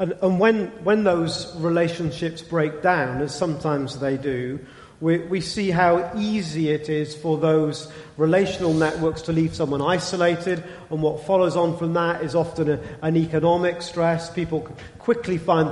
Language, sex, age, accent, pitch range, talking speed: English, male, 40-59, British, 155-185 Hz, 155 wpm